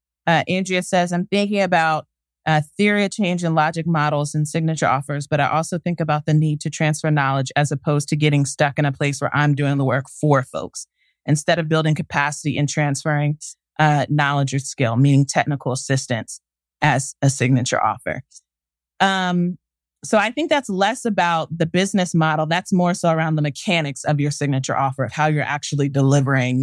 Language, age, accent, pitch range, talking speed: English, 30-49, American, 130-175 Hz, 185 wpm